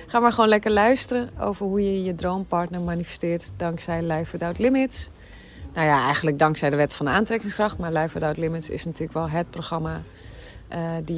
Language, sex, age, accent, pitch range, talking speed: Dutch, female, 30-49, Dutch, 145-200 Hz, 190 wpm